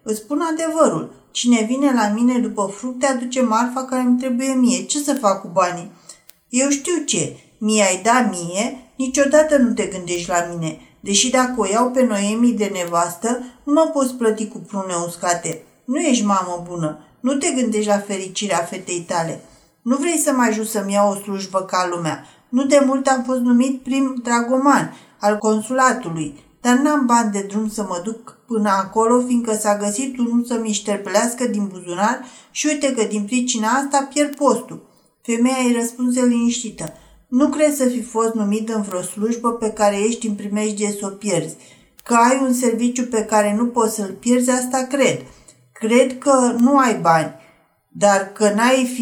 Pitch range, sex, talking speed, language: 205-255 Hz, female, 175 wpm, Romanian